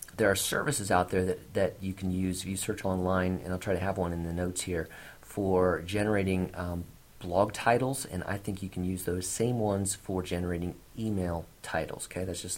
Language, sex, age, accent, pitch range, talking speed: English, male, 40-59, American, 90-110 Hz, 215 wpm